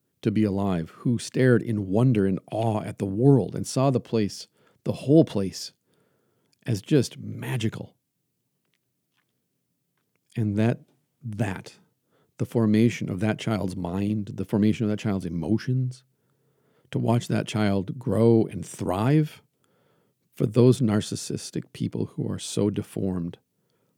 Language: English